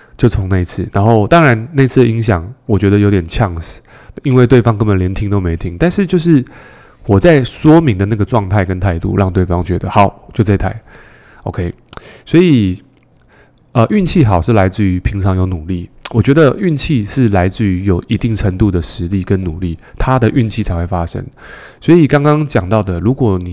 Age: 20-39